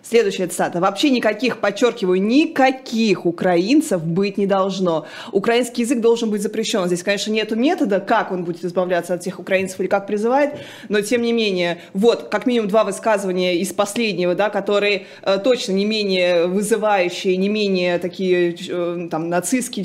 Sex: female